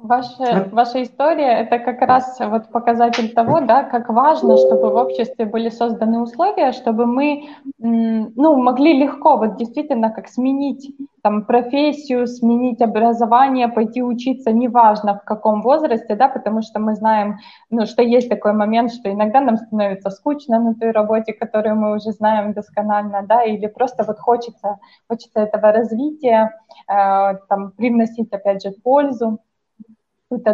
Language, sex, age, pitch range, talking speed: Russian, female, 20-39, 210-245 Hz, 145 wpm